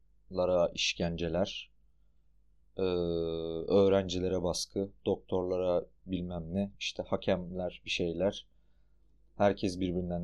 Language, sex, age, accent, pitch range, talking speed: Turkish, male, 30-49, native, 75-95 Hz, 75 wpm